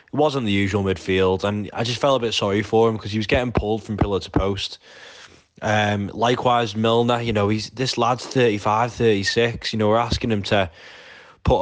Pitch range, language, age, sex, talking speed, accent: 105-120 Hz, English, 20-39, male, 205 wpm, British